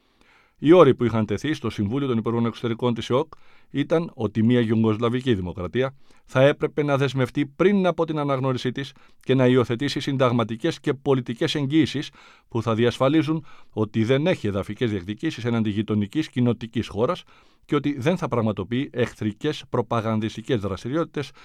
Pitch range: 115-150 Hz